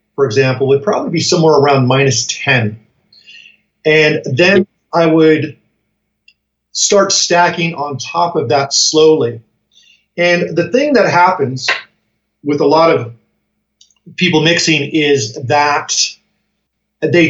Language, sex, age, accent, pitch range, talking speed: English, male, 40-59, American, 140-175 Hz, 120 wpm